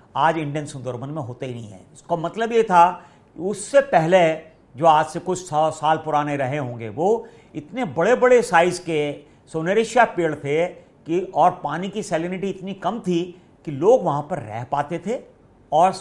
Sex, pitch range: male, 145-195 Hz